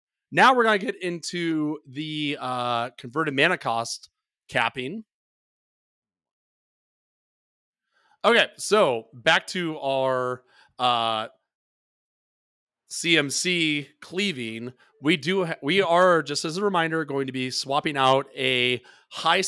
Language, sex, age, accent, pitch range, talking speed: English, male, 30-49, American, 125-160 Hz, 100 wpm